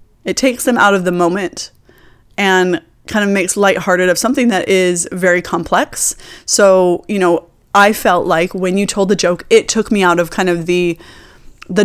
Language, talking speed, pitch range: English, 190 wpm, 180-245 Hz